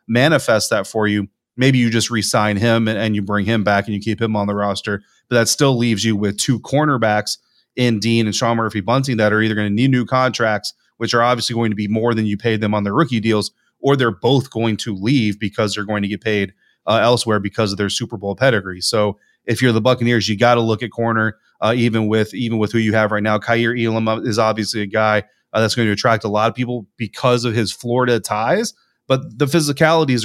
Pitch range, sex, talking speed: 110-125 Hz, male, 245 wpm